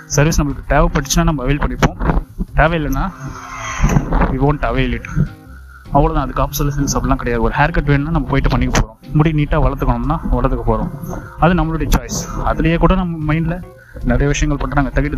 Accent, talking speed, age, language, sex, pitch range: native, 65 wpm, 20-39, Tamil, male, 125-150 Hz